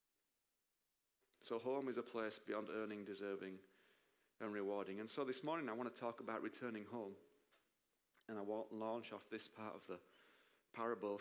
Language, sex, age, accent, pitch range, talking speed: English, male, 40-59, British, 105-130 Hz, 170 wpm